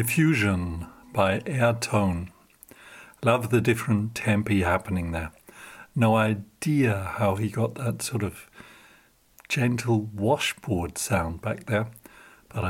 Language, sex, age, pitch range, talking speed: English, male, 60-79, 100-120 Hz, 110 wpm